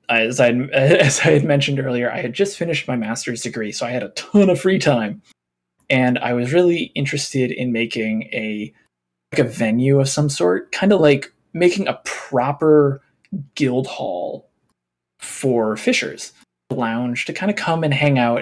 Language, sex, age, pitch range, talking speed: English, male, 20-39, 120-150 Hz, 175 wpm